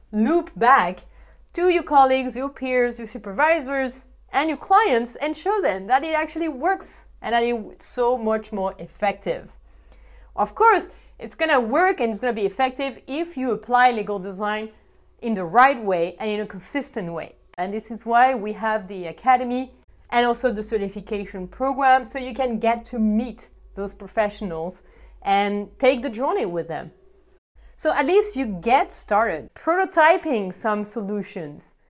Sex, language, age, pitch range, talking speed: female, English, 30-49, 210-285 Hz, 165 wpm